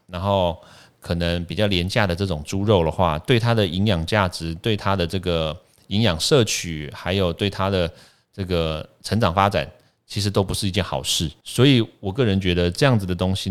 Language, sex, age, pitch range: Chinese, male, 30-49, 85-105 Hz